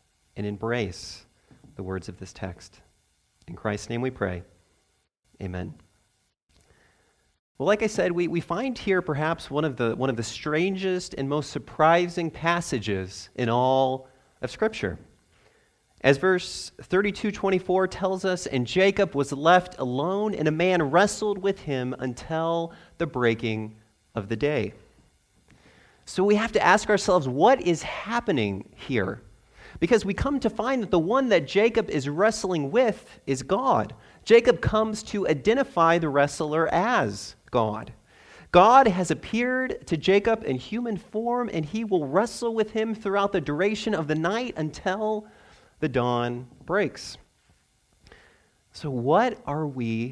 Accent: American